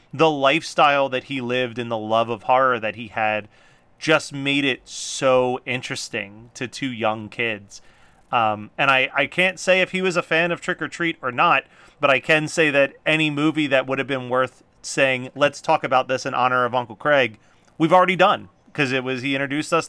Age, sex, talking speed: 30-49, male, 210 wpm